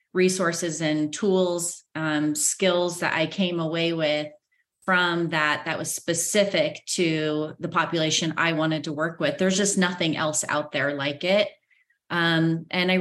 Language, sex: English, female